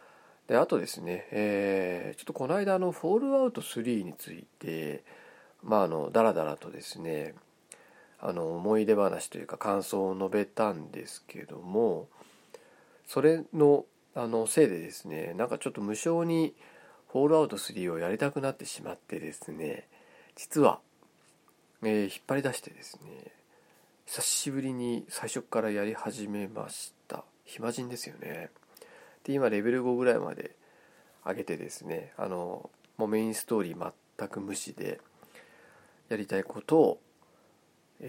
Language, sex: Japanese, male